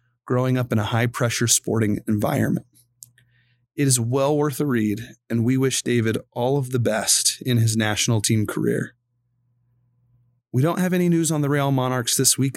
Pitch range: 115-130 Hz